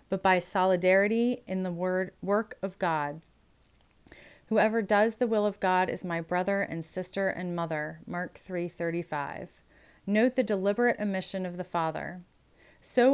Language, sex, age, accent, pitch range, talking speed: English, female, 30-49, American, 175-205 Hz, 140 wpm